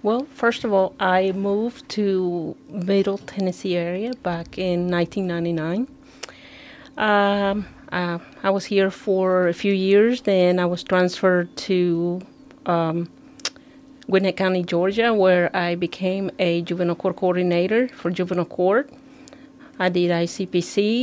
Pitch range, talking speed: 175-205 Hz, 125 wpm